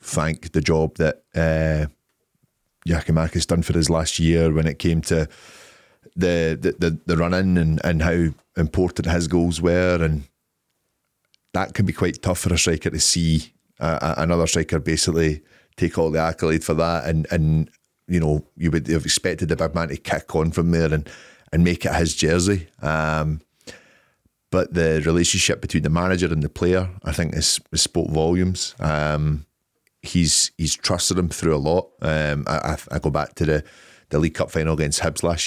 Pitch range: 80-85 Hz